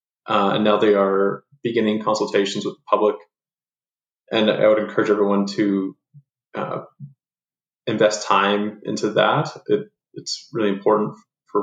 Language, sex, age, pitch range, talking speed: English, male, 20-39, 100-120 Hz, 130 wpm